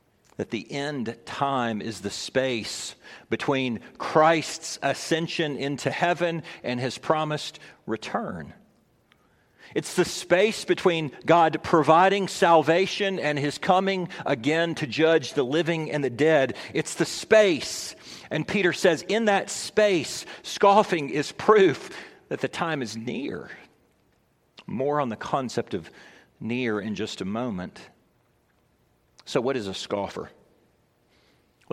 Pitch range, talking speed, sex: 140-190 Hz, 125 wpm, male